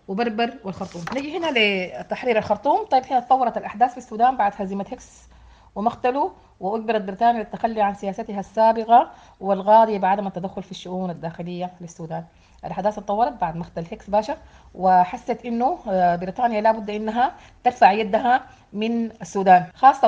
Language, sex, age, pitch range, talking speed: Arabic, female, 30-49, 200-260 Hz, 135 wpm